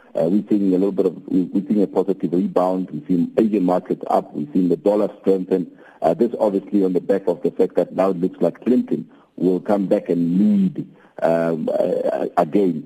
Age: 50-69